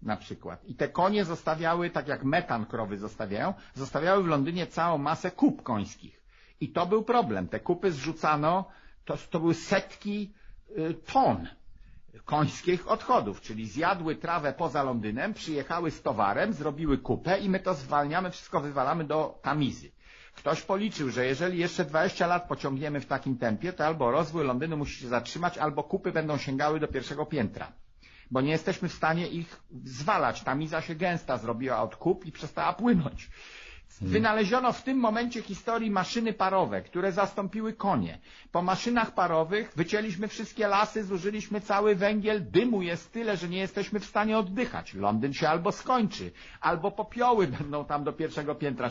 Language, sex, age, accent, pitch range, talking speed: Polish, male, 50-69, native, 145-210 Hz, 160 wpm